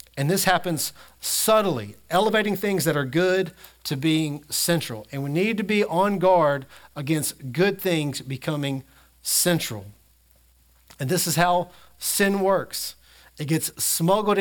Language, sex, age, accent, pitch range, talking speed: English, male, 40-59, American, 135-185 Hz, 135 wpm